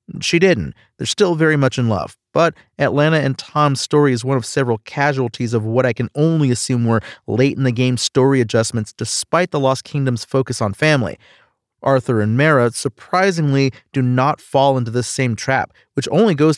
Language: English